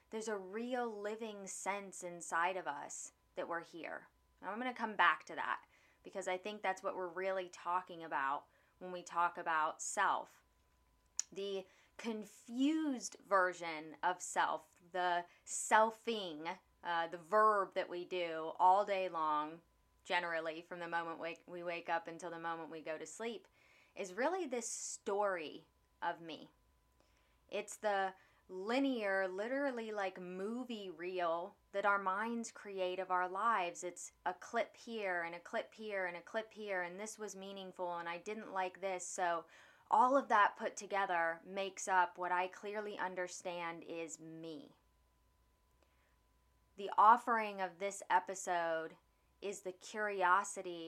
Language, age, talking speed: English, 20-39, 145 wpm